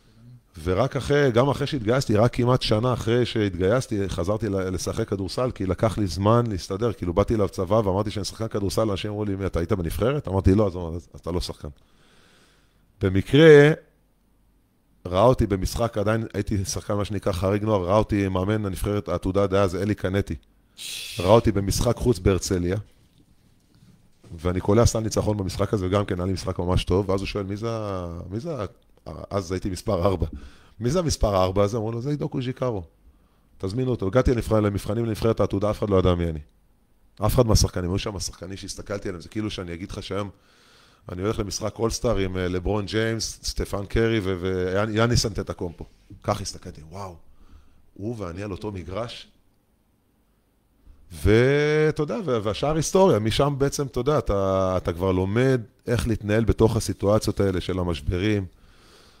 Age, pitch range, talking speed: 30-49, 95-115 Hz, 155 wpm